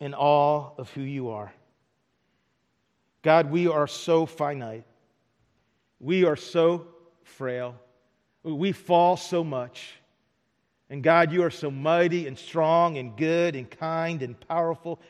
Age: 40-59